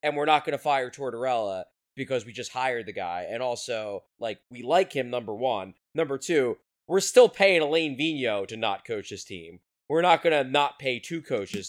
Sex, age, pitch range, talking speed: male, 20-39, 135-205 Hz, 210 wpm